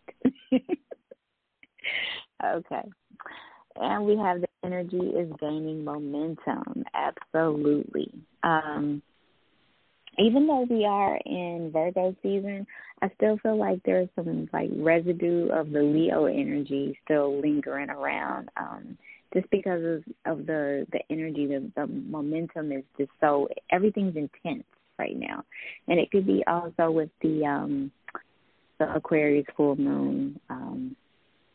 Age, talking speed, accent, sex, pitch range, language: 20-39, 120 wpm, American, female, 150-185 Hz, English